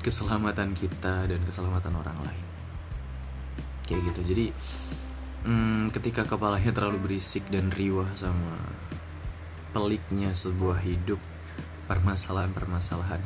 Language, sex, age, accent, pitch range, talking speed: Indonesian, male, 20-39, native, 85-105 Hz, 95 wpm